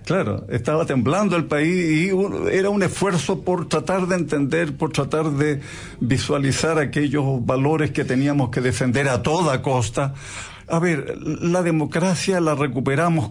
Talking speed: 145 wpm